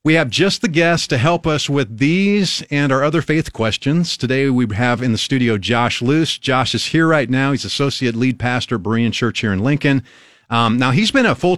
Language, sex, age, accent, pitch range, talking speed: English, male, 40-59, American, 115-155 Hz, 230 wpm